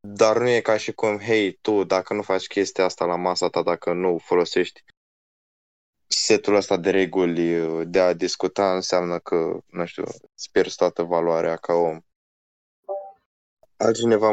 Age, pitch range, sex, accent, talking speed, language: 20-39, 90-110 Hz, male, native, 155 wpm, Romanian